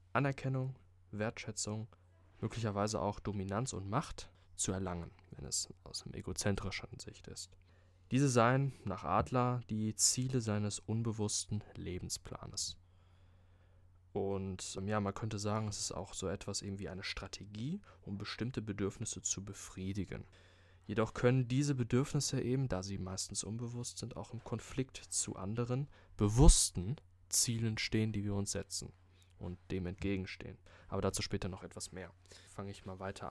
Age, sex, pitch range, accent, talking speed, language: 20-39, male, 90-110 Hz, German, 140 wpm, German